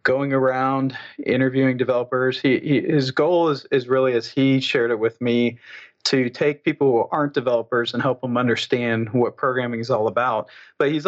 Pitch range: 120-135 Hz